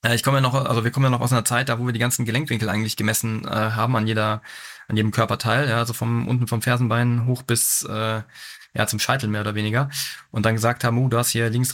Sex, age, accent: male, 20-39, German